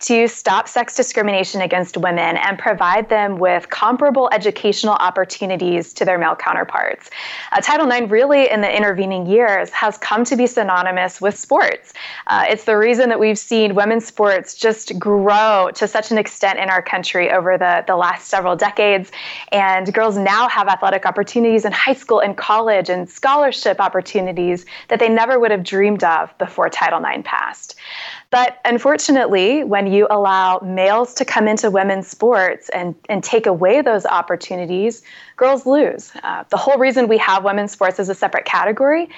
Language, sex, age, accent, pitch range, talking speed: English, female, 20-39, American, 190-235 Hz, 170 wpm